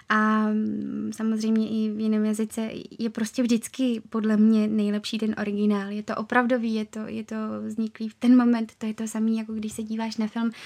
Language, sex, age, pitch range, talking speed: Czech, female, 20-39, 220-250 Hz, 195 wpm